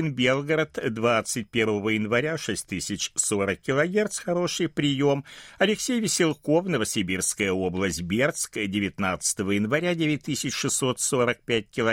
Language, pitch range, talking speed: Russian, 100-150 Hz, 75 wpm